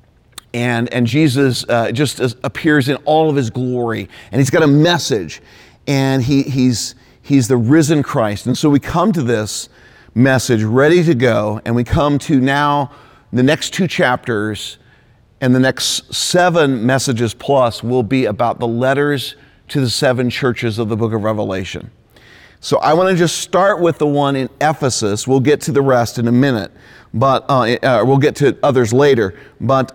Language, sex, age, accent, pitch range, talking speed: English, male, 40-59, American, 120-150 Hz, 180 wpm